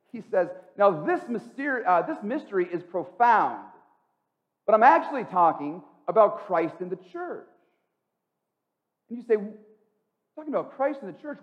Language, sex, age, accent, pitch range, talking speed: English, male, 40-59, American, 170-255 Hz, 145 wpm